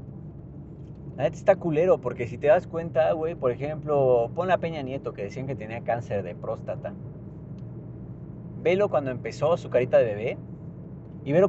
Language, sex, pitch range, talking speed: Spanish, male, 120-155 Hz, 155 wpm